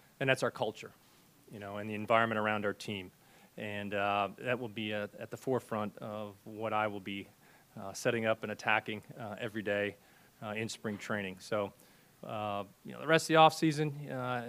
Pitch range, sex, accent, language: 105-125 Hz, male, American, English